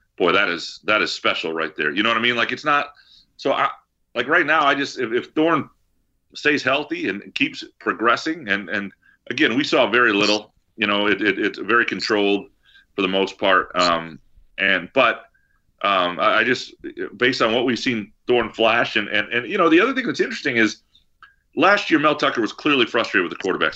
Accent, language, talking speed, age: American, English, 210 wpm, 40-59